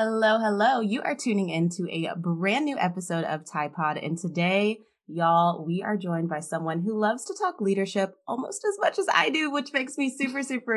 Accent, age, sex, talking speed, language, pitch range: American, 20-39, female, 210 wpm, English, 165-210 Hz